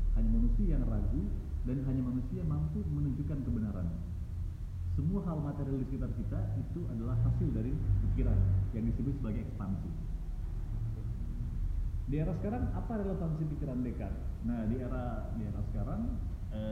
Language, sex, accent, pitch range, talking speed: Indonesian, male, native, 90-115 Hz, 145 wpm